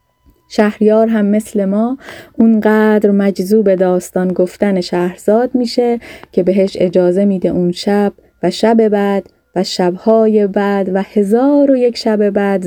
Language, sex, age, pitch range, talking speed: Persian, female, 30-49, 190-230 Hz, 135 wpm